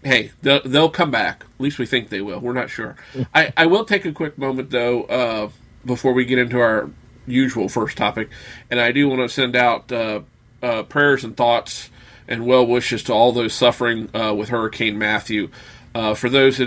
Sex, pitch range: male, 115-130 Hz